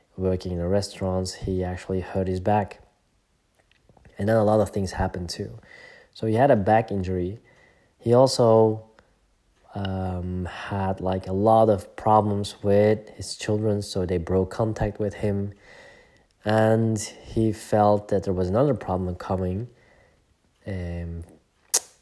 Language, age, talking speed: English, 20-39, 140 wpm